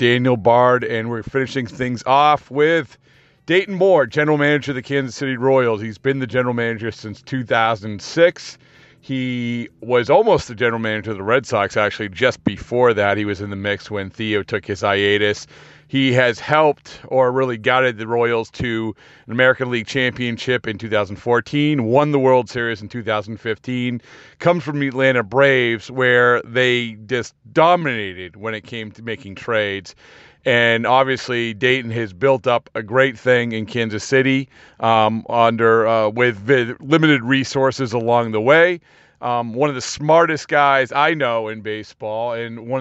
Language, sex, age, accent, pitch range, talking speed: English, male, 40-59, American, 110-130 Hz, 165 wpm